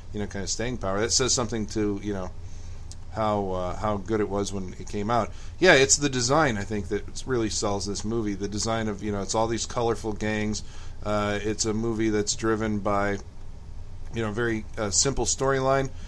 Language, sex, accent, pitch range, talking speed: English, male, American, 100-110 Hz, 215 wpm